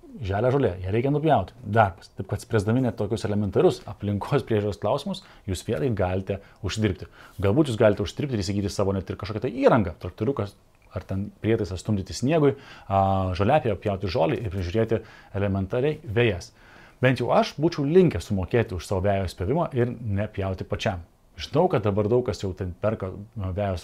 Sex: male